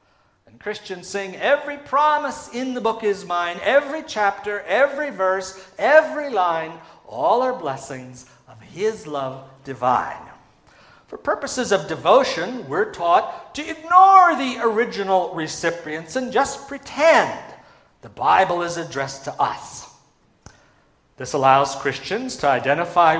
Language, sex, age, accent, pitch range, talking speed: English, male, 50-69, American, 155-250 Hz, 120 wpm